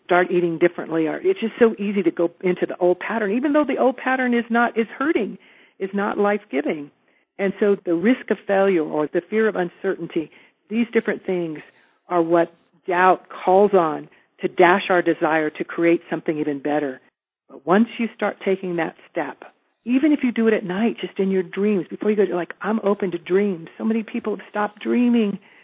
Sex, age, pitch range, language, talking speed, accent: female, 50-69, 175-225 Hz, English, 205 wpm, American